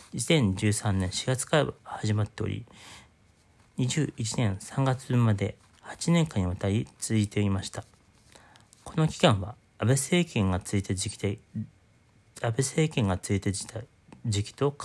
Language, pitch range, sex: Japanese, 100-130 Hz, male